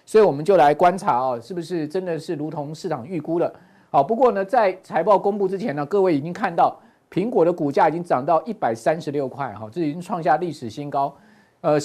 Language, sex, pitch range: Chinese, male, 150-200 Hz